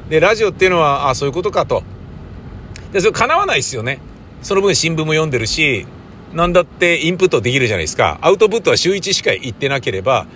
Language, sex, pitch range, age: Japanese, male, 140-200 Hz, 50-69